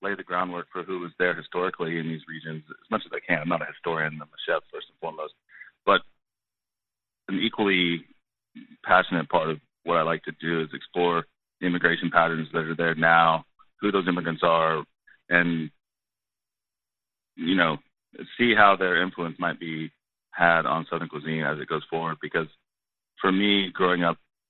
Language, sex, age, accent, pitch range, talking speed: English, male, 30-49, American, 80-85 Hz, 175 wpm